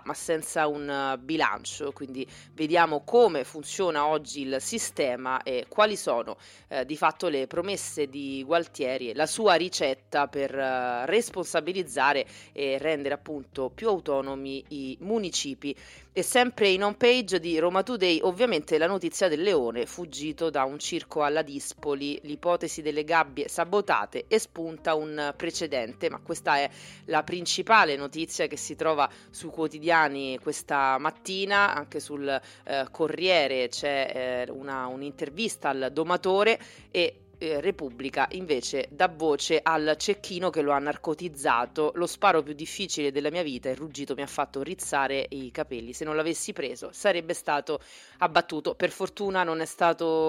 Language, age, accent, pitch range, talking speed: Italian, 30-49, native, 140-175 Hz, 145 wpm